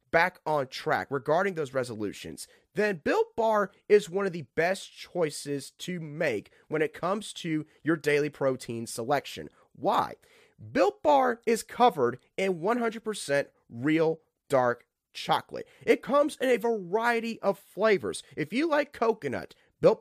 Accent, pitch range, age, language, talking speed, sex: American, 155-245 Hz, 30-49, English, 140 wpm, male